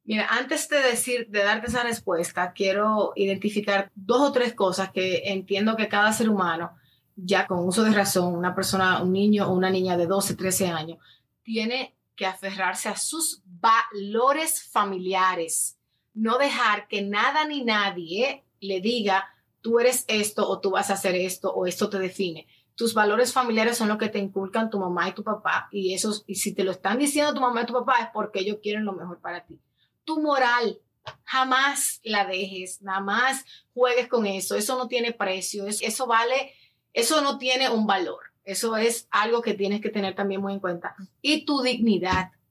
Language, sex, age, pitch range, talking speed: English, female, 30-49, 190-235 Hz, 190 wpm